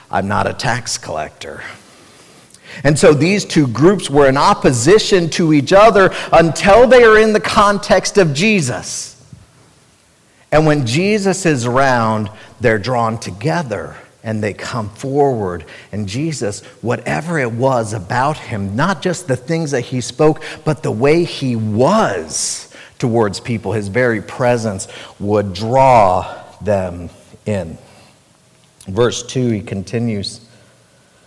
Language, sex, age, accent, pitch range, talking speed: English, male, 50-69, American, 125-180 Hz, 130 wpm